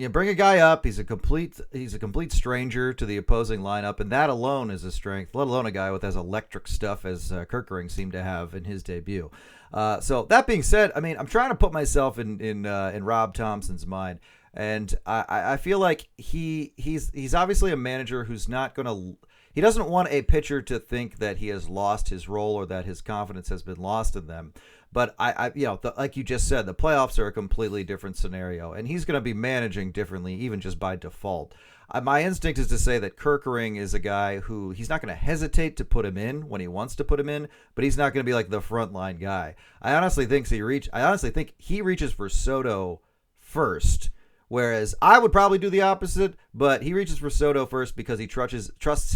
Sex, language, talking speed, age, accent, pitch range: male, English, 230 wpm, 40-59, American, 100-140 Hz